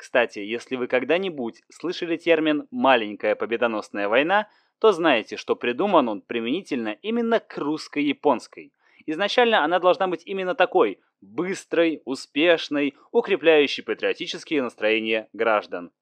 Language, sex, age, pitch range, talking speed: Russian, male, 20-39, 130-195 Hz, 110 wpm